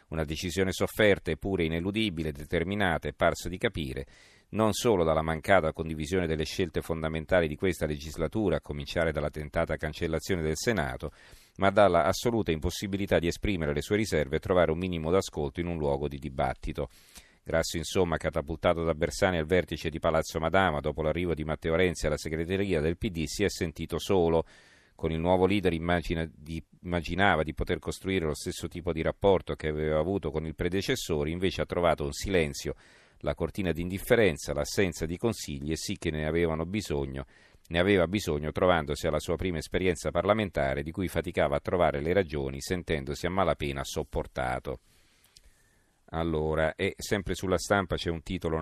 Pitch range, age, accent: 75-95 Hz, 40-59, native